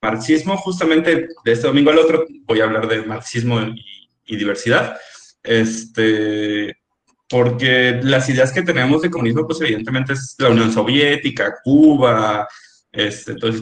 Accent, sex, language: Mexican, male, Spanish